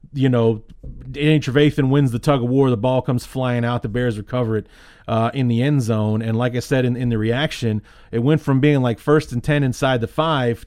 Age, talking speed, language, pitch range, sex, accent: 30-49, 235 wpm, English, 115-140 Hz, male, American